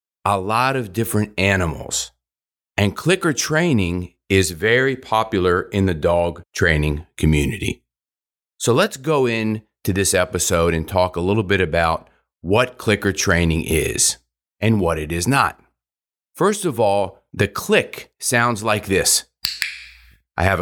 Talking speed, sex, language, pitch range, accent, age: 140 wpm, male, English, 85-115 Hz, American, 40-59